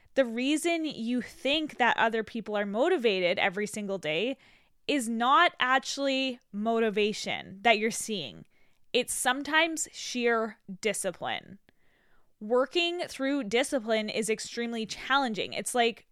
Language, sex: English, female